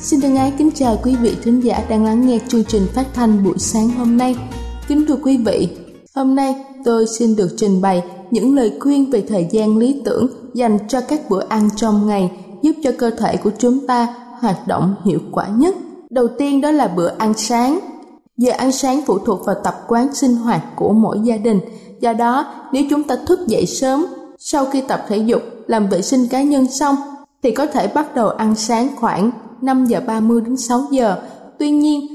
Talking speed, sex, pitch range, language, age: 215 wpm, female, 220-270 Hz, Vietnamese, 20-39